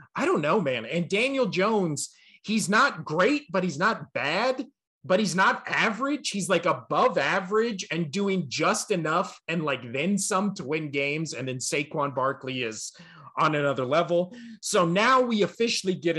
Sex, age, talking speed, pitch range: male, 30-49, 170 wpm, 150-195 Hz